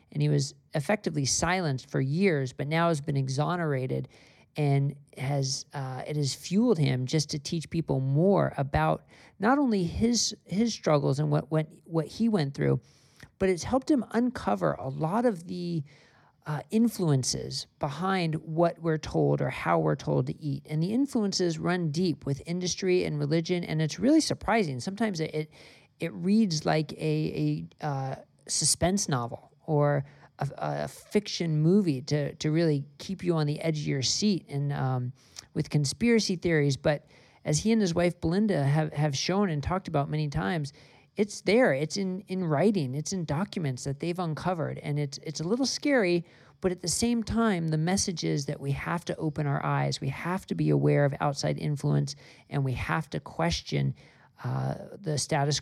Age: 40-59